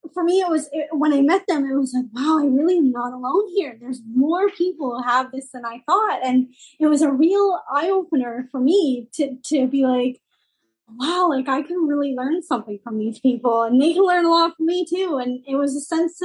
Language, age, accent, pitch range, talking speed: English, 20-39, American, 250-315 Hz, 230 wpm